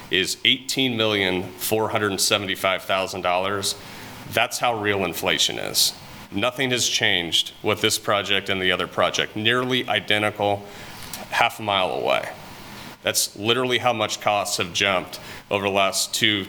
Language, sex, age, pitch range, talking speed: English, male, 30-49, 100-115 Hz, 155 wpm